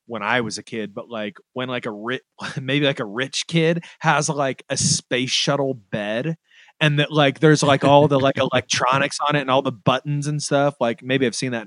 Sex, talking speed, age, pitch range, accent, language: male, 225 wpm, 20-39, 125-155 Hz, American, English